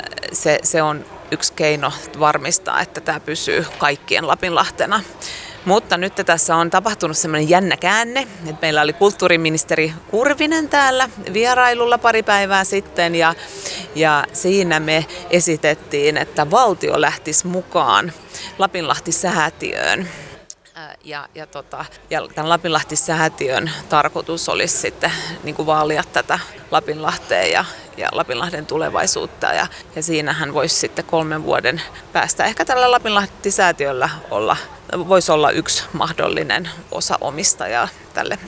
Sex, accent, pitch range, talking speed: female, native, 160-200 Hz, 115 wpm